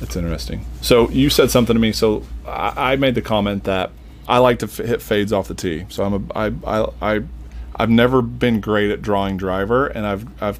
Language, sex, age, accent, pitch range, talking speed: English, male, 30-49, American, 85-105 Hz, 225 wpm